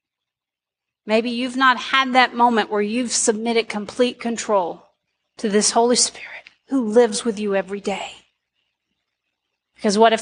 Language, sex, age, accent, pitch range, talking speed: English, female, 40-59, American, 190-275 Hz, 140 wpm